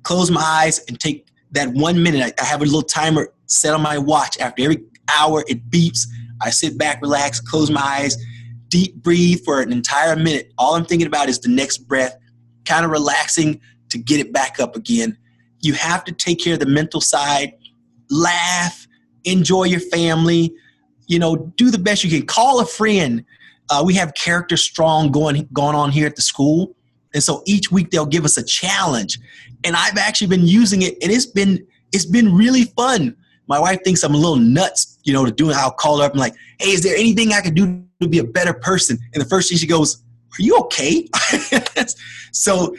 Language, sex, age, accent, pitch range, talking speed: English, male, 30-49, American, 135-180 Hz, 210 wpm